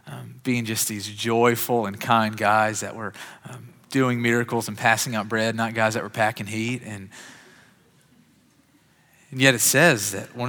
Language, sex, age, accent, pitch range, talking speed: English, male, 30-49, American, 130-180 Hz, 170 wpm